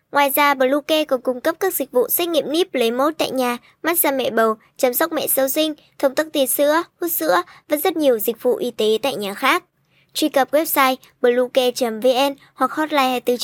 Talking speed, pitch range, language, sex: 205 wpm, 235-295 Hz, Vietnamese, male